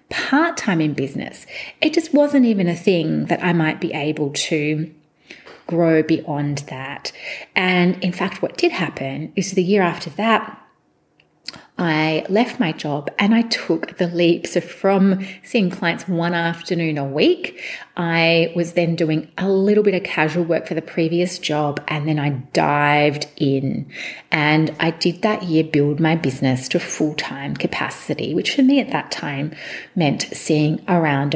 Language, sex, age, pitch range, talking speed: English, female, 30-49, 155-210 Hz, 165 wpm